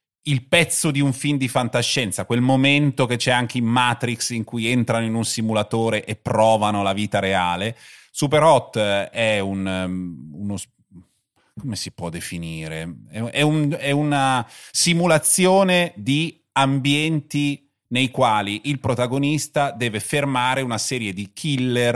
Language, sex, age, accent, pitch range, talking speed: Italian, male, 30-49, native, 110-145 Hz, 140 wpm